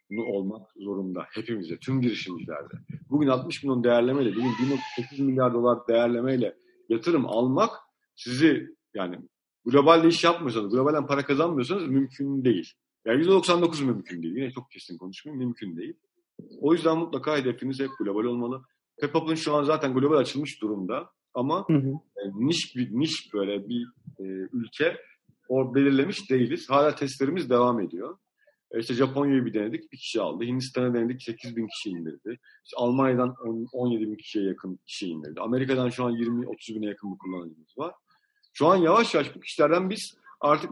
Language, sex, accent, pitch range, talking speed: Turkish, male, native, 120-150 Hz, 145 wpm